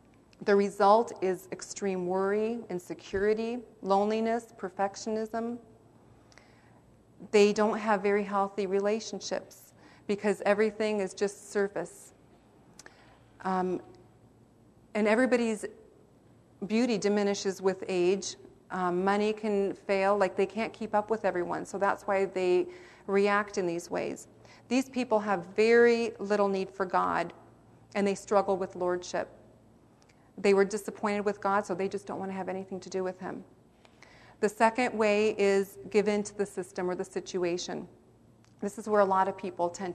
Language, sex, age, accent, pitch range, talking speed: English, female, 40-59, American, 185-215 Hz, 145 wpm